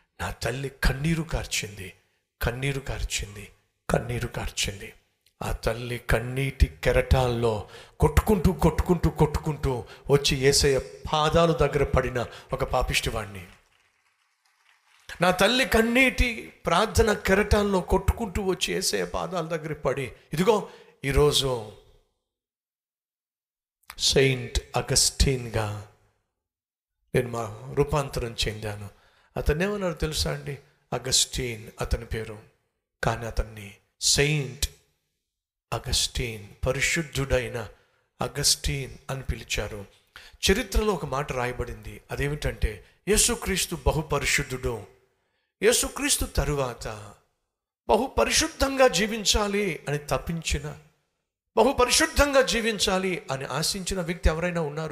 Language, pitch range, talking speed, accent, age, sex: Telugu, 115-170 Hz, 75 wpm, native, 50-69, male